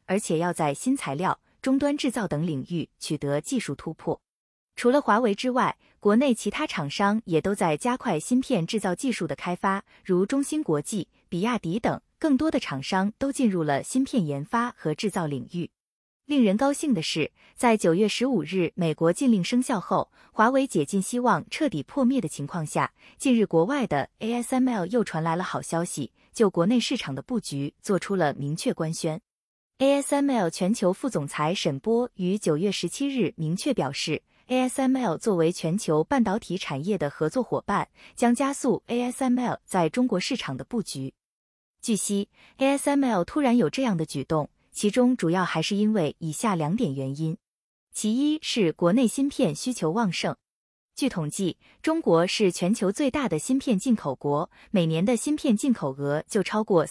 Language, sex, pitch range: Chinese, female, 165-250 Hz